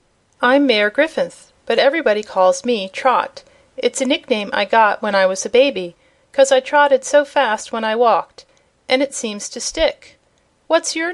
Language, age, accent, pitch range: Japanese, 40-59, American, 205-285 Hz